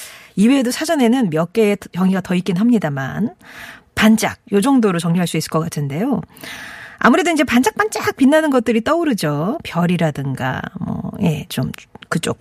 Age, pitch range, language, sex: 40-59, 180-255 Hz, Korean, female